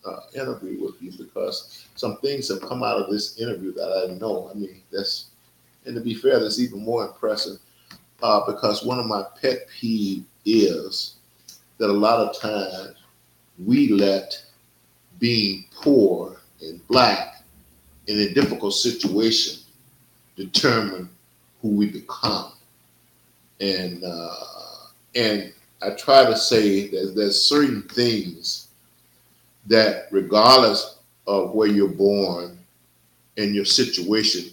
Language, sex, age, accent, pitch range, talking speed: English, male, 50-69, American, 95-125 Hz, 130 wpm